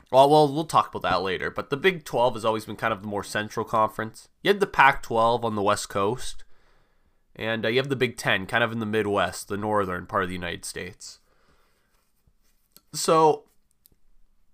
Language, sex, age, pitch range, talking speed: English, male, 20-39, 105-135 Hz, 195 wpm